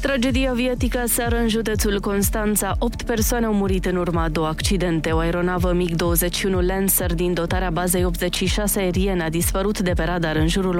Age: 20-39